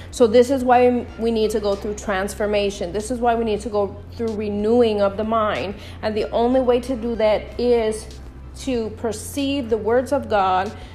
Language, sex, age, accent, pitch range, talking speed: English, female, 40-59, American, 220-260 Hz, 195 wpm